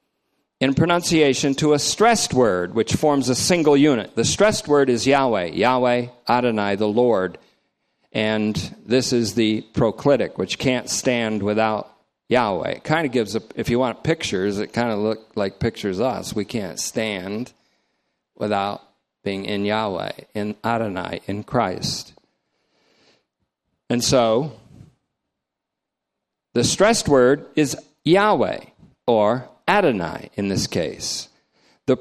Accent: American